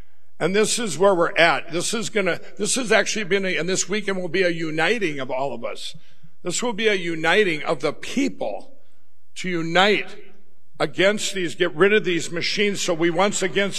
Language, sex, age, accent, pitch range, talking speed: English, male, 60-79, American, 170-215 Hz, 200 wpm